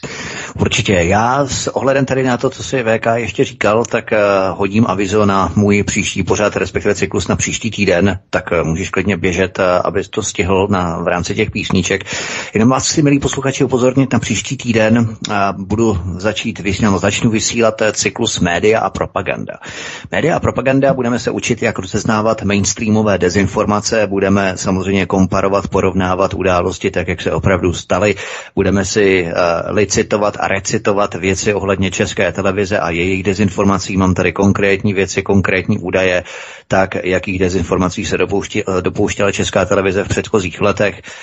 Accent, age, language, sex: native, 30-49, Czech, male